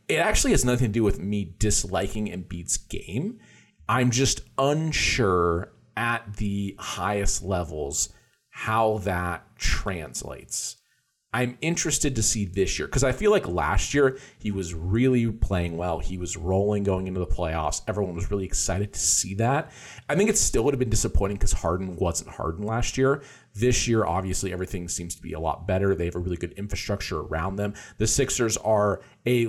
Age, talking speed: 40-59, 180 wpm